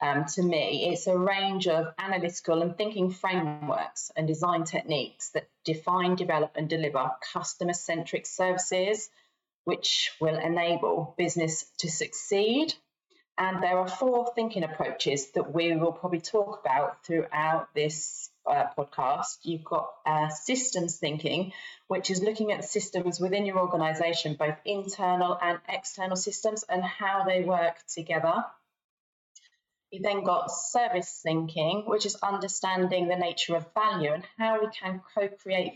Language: English